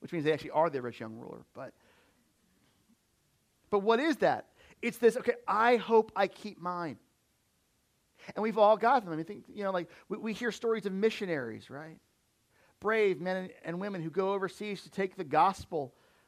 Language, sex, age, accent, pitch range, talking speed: English, male, 40-59, American, 160-215 Hz, 190 wpm